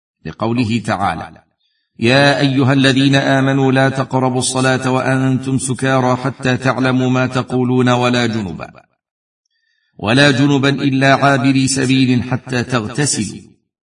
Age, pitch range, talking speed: 50-69, 115-130 Hz, 105 wpm